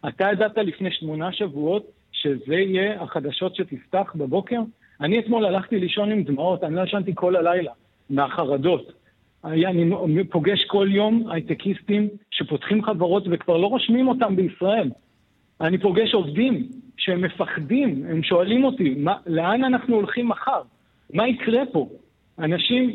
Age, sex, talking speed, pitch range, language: 50-69, male, 130 wpm, 165-210 Hz, Hebrew